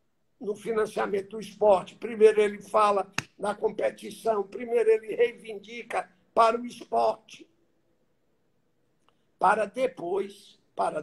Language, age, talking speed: Portuguese, 60-79, 100 wpm